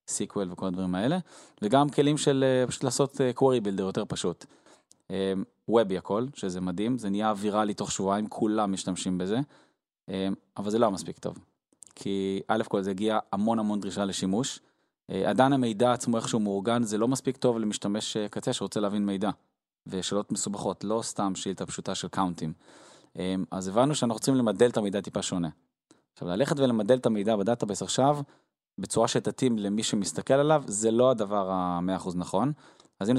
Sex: male